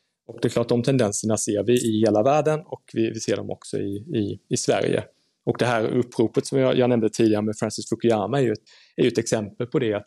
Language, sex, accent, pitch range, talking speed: Swedish, male, Norwegian, 105-130 Hz, 255 wpm